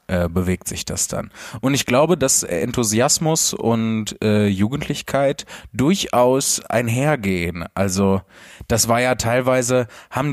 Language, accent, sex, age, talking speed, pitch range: German, German, male, 20-39, 115 wpm, 95-115 Hz